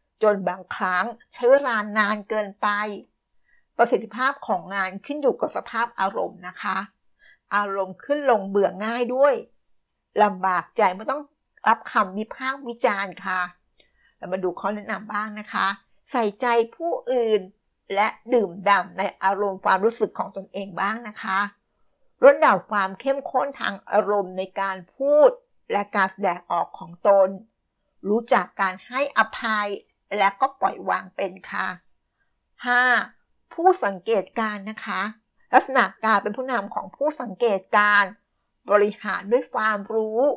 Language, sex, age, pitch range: Thai, female, 60-79, 195-245 Hz